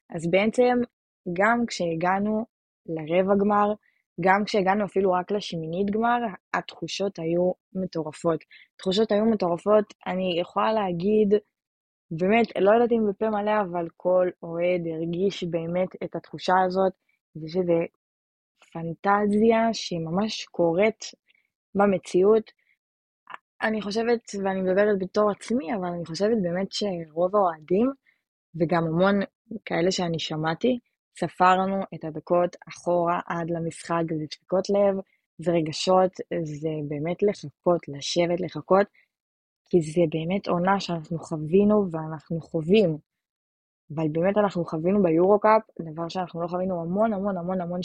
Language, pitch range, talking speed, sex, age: Hebrew, 170-205 Hz, 120 wpm, female, 20-39